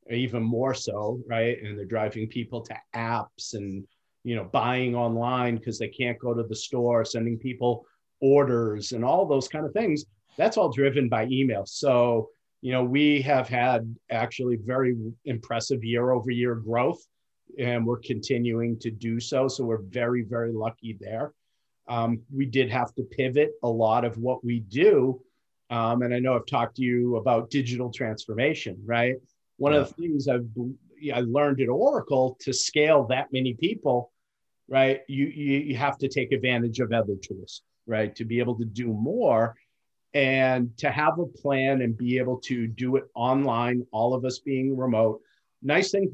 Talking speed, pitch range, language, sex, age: 175 wpm, 115-135 Hz, English, male, 40-59